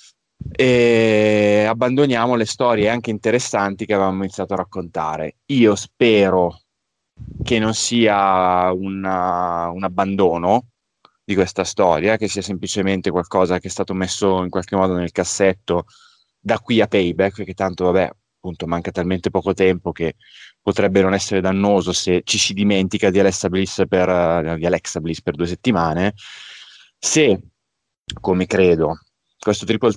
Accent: native